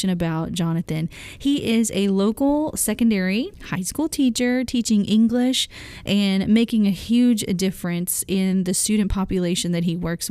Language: English